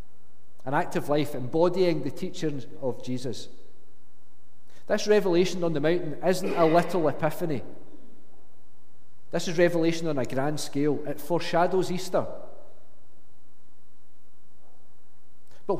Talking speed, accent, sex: 105 wpm, British, male